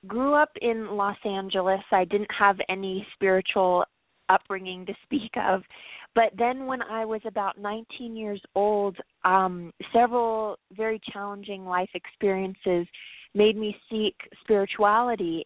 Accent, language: American, English